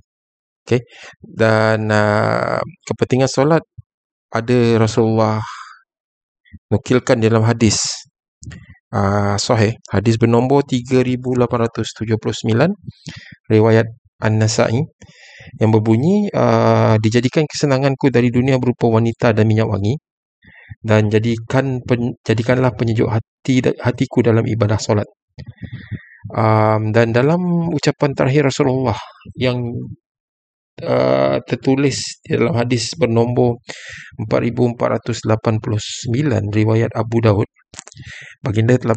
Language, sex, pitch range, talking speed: Malay, male, 110-125 Hz, 85 wpm